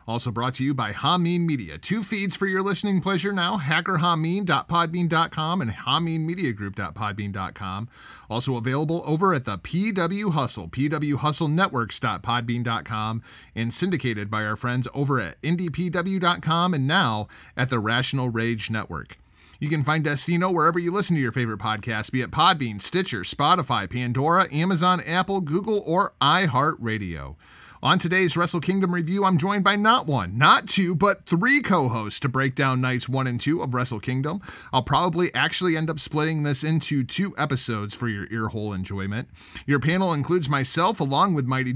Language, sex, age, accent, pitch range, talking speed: English, male, 30-49, American, 120-175 Hz, 155 wpm